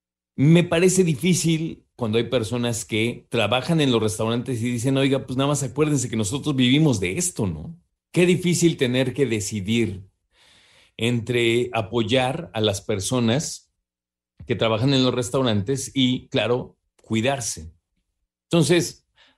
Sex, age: male, 40-59